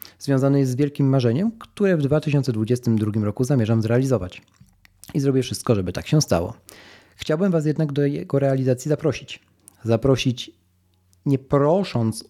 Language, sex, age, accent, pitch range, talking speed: Polish, male, 40-59, native, 110-140 Hz, 135 wpm